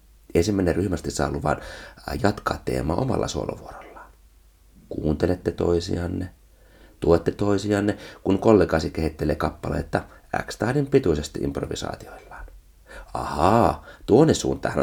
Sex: male